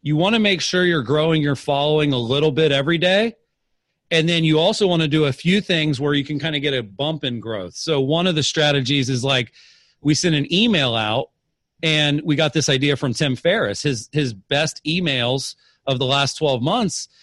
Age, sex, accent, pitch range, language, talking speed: 40-59, male, American, 140-180 Hz, English, 220 wpm